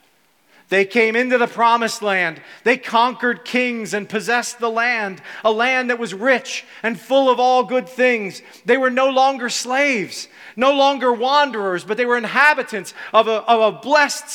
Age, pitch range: 40-59, 165-225 Hz